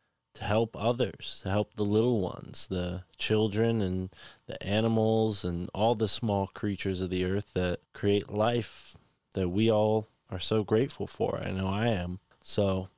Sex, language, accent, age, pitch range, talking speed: male, English, American, 20-39, 95-110 Hz, 165 wpm